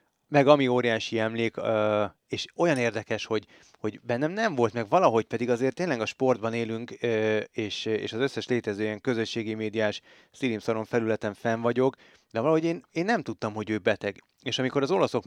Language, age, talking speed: Hungarian, 30-49, 170 wpm